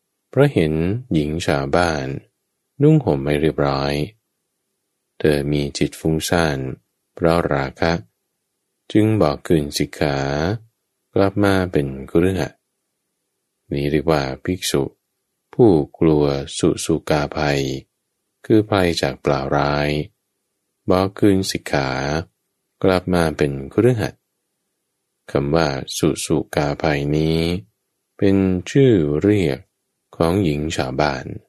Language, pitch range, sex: English, 75-90 Hz, male